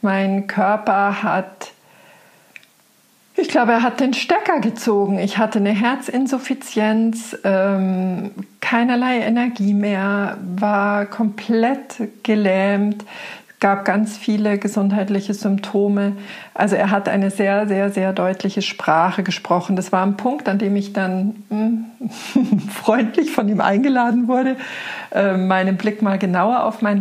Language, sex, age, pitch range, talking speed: German, female, 50-69, 190-220 Hz, 125 wpm